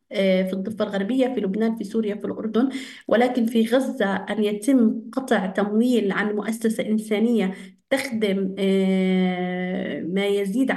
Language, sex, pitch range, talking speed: Arabic, female, 210-235 Hz, 125 wpm